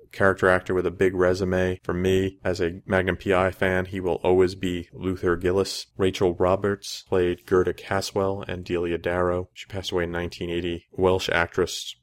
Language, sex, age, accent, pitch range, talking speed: English, male, 30-49, American, 90-95 Hz, 170 wpm